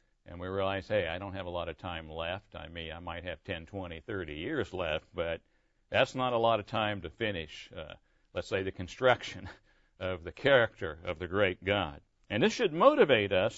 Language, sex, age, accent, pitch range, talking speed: English, male, 60-79, American, 95-125 Hz, 210 wpm